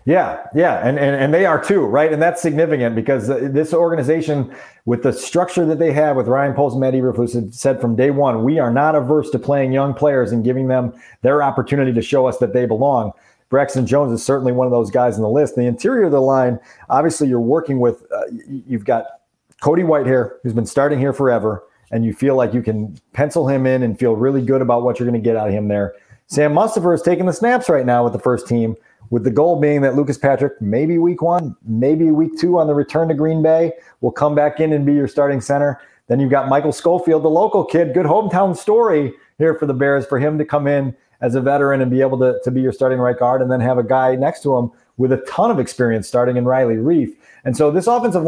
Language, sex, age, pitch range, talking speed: English, male, 40-59, 125-150 Hz, 245 wpm